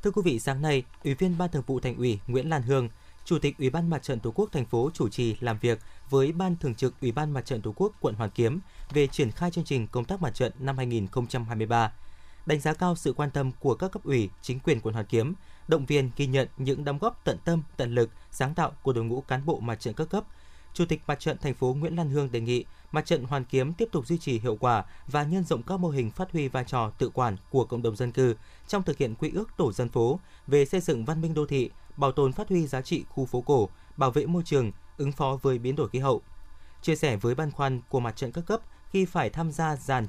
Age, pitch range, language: 20-39, 120-160 Hz, Vietnamese